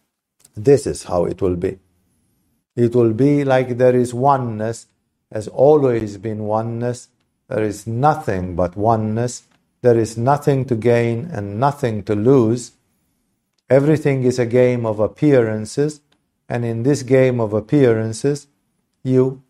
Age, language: 50-69, English